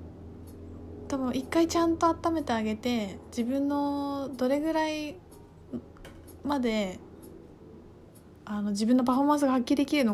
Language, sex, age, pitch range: Japanese, female, 20-39, 200-280 Hz